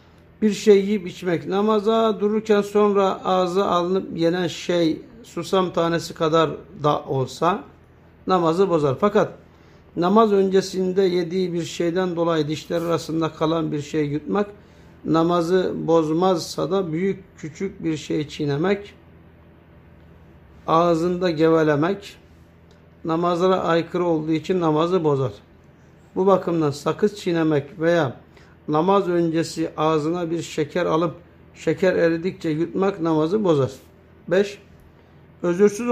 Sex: male